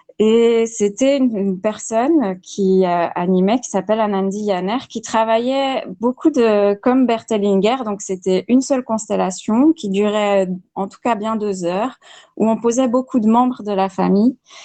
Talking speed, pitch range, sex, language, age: 165 wpm, 190-230 Hz, female, French, 20-39